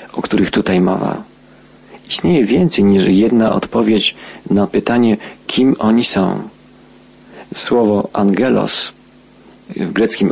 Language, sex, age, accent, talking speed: Polish, male, 40-59, native, 105 wpm